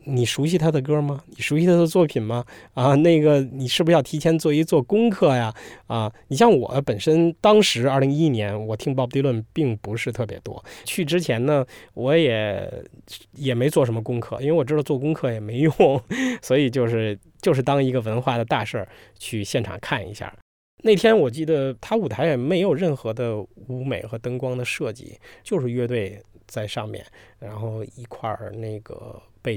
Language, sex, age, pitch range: Chinese, male, 20-39, 115-150 Hz